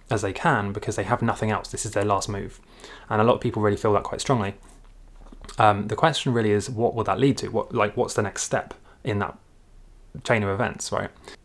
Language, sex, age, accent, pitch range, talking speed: English, male, 20-39, British, 105-125 Hz, 235 wpm